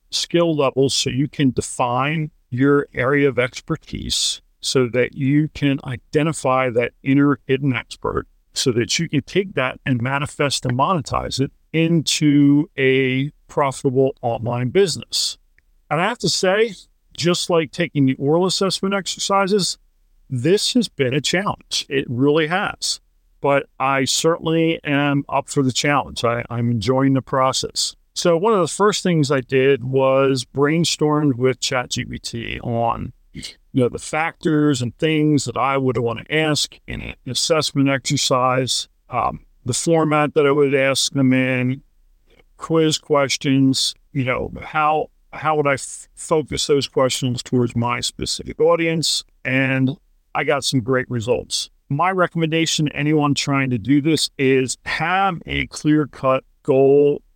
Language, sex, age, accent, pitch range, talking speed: English, male, 40-59, American, 130-155 Hz, 150 wpm